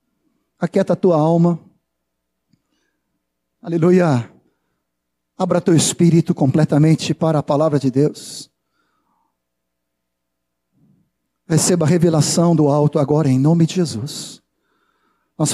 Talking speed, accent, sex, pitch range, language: 95 wpm, Brazilian, male, 150-185 Hz, Portuguese